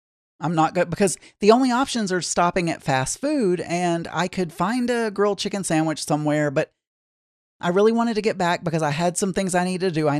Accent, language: American, English